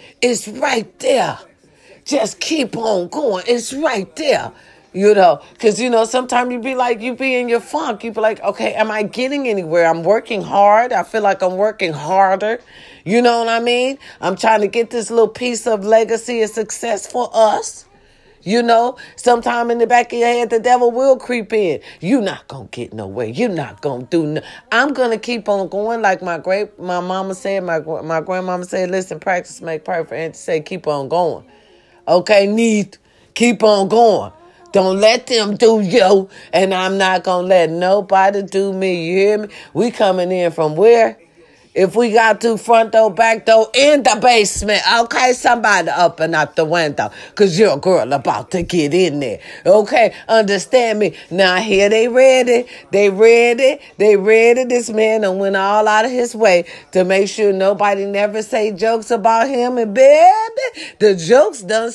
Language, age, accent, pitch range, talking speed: English, 40-59, American, 185-235 Hz, 185 wpm